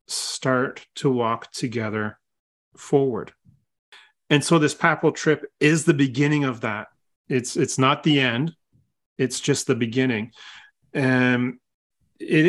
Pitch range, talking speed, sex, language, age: 125-145 Hz, 125 wpm, male, English, 40-59